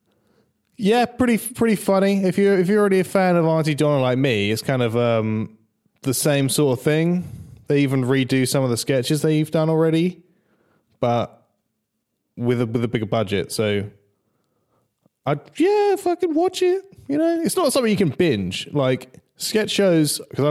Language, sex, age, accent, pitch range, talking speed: English, male, 20-39, British, 100-150 Hz, 185 wpm